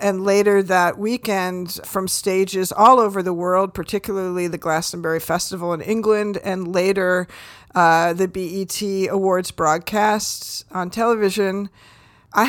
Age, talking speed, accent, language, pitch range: 50-69, 125 wpm, American, English, 180-210 Hz